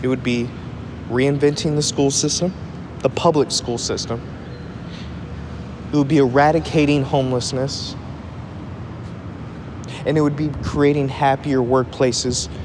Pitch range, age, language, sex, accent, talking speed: 115-140 Hz, 20-39, English, male, American, 110 wpm